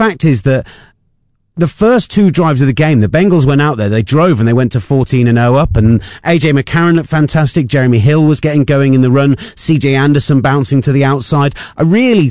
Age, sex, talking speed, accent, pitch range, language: 30-49, male, 225 wpm, British, 120-155 Hz, English